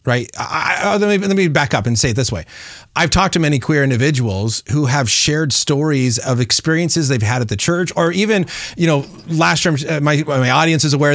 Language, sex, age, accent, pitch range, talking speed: English, male, 30-49, American, 120-165 Hz, 225 wpm